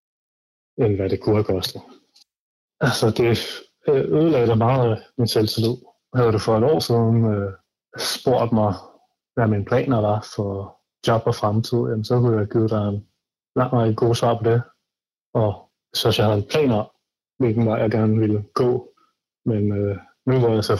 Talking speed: 180 wpm